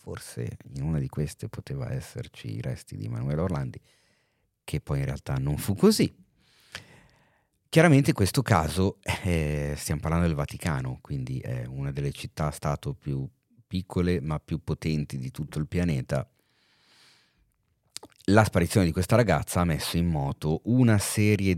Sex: male